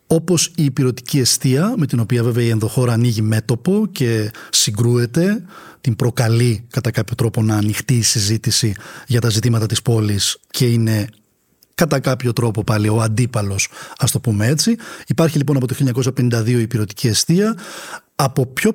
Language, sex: Greek, male